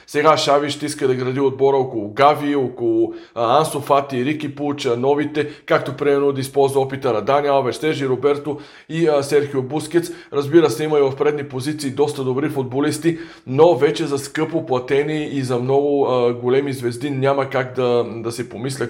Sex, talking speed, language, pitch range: male, 160 wpm, Bulgarian, 140-165 Hz